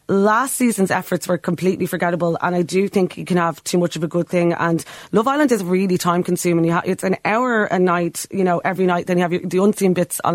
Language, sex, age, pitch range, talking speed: English, female, 30-49, 175-205 Hz, 245 wpm